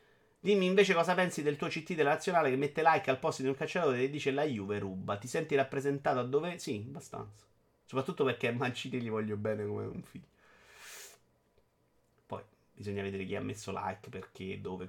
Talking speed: 190 wpm